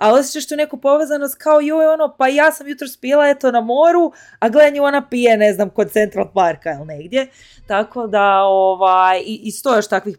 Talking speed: 195 wpm